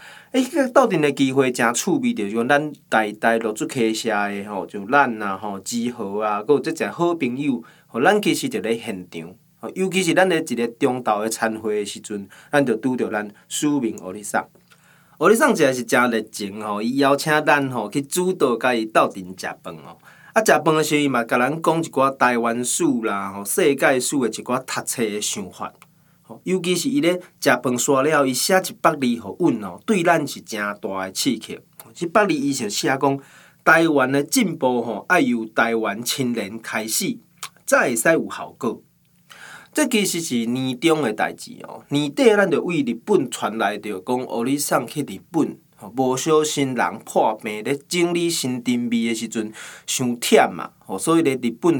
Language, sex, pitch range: Chinese, male, 115-160 Hz